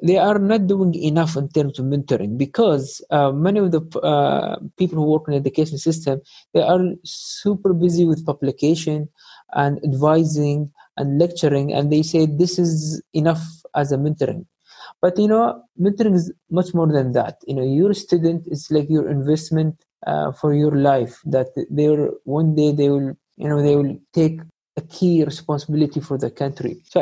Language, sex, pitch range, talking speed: English, male, 145-175 Hz, 180 wpm